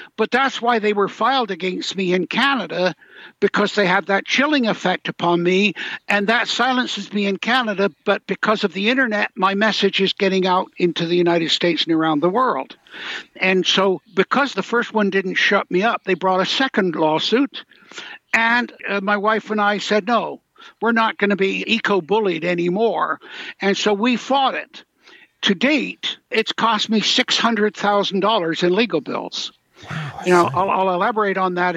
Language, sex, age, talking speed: English, male, 60-79, 175 wpm